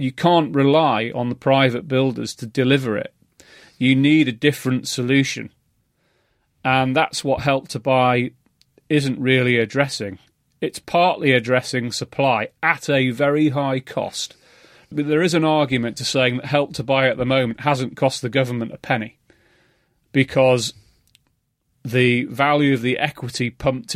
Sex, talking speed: male, 150 wpm